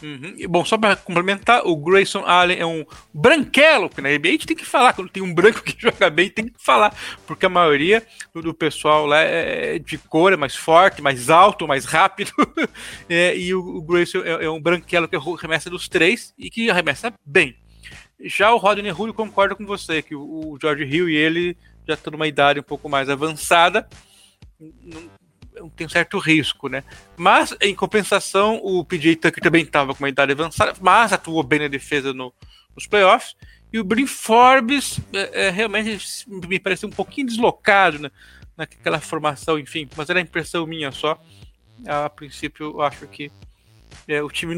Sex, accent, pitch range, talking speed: male, Brazilian, 150-200 Hz, 180 wpm